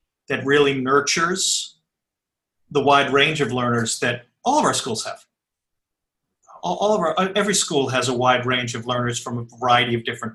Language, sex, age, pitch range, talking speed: English, male, 40-59, 130-180 Hz, 180 wpm